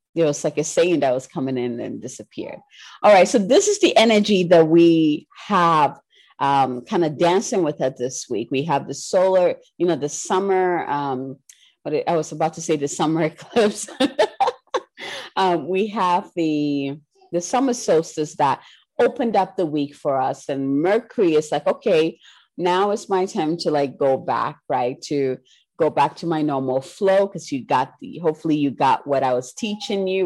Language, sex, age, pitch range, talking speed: English, female, 30-49, 140-180 Hz, 185 wpm